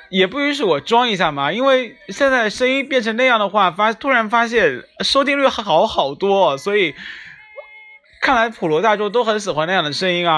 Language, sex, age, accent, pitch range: Chinese, male, 20-39, native, 130-190 Hz